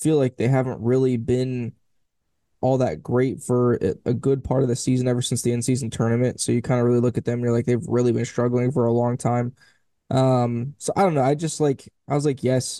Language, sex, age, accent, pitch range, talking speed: English, male, 10-29, American, 120-140 Hz, 245 wpm